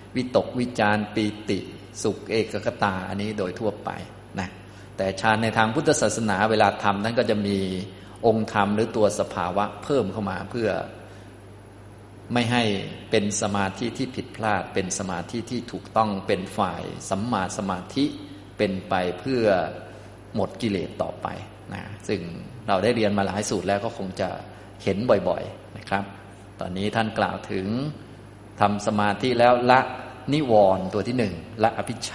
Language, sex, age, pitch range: Thai, male, 20-39, 100-110 Hz